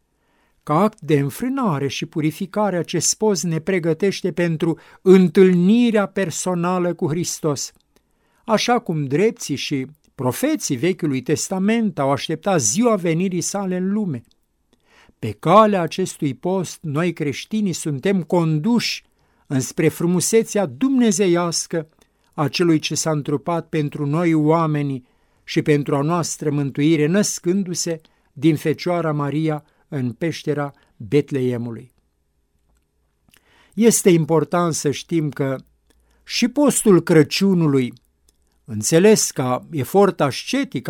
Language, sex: Romanian, male